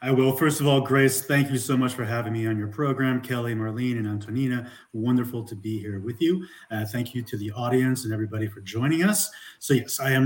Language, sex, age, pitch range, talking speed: English, male, 30-49, 125-150 Hz, 240 wpm